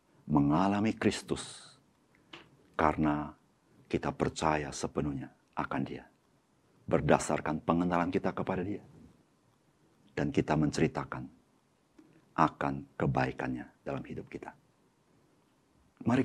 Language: Indonesian